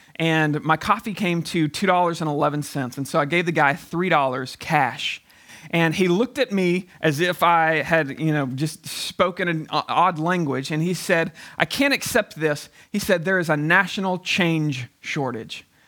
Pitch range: 160-220 Hz